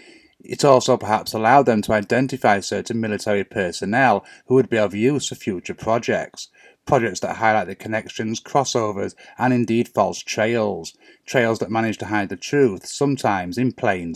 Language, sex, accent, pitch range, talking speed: English, male, British, 100-130 Hz, 160 wpm